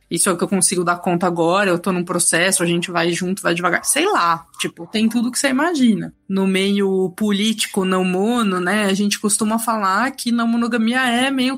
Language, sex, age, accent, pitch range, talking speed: Portuguese, female, 20-39, Brazilian, 190-235 Hz, 220 wpm